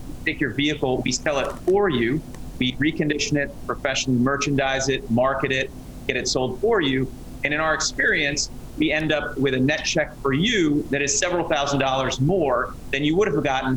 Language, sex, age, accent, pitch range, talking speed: English, male, 40-59, American, 130-150 Hz, 195 wpm